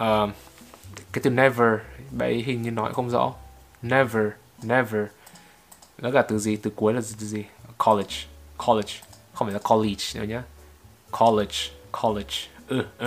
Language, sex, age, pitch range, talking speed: Vietnamese, male, 20-39, 100-130 Hz, 155 wpm